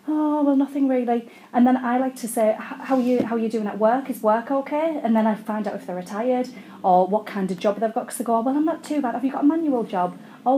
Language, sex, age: English, female, 30-49